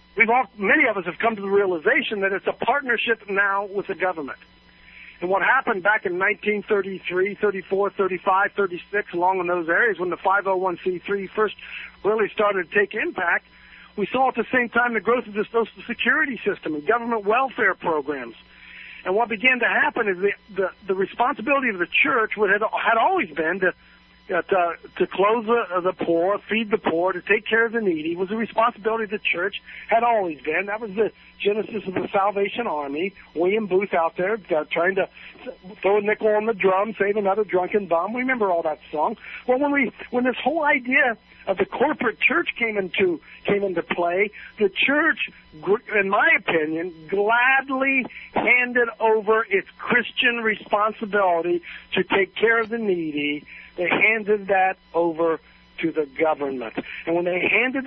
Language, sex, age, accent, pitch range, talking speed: English, male, 50-69, American, 185-235 Hz, 180 wpm